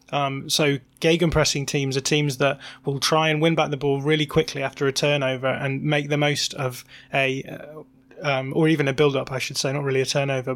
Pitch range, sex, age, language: 135-150 Hz, male, 20-39, English